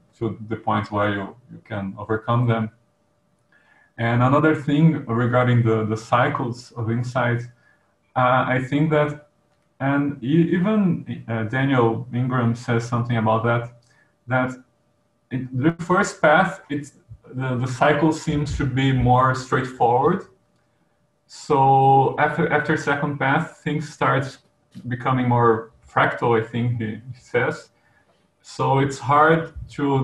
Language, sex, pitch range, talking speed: English, male, 115-150 Hz, 120 wpm